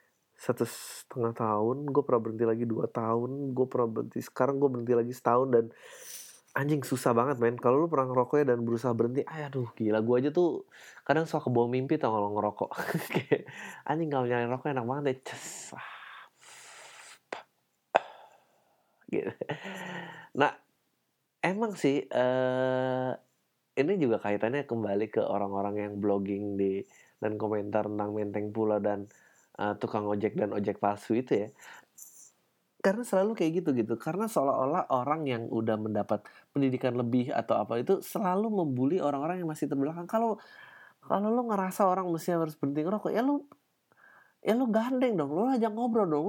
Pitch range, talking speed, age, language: 115-185 Hz, 150 wpm, 20-39, Indonesian